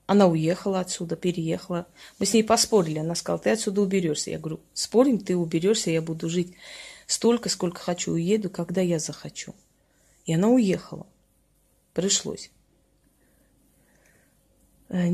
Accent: native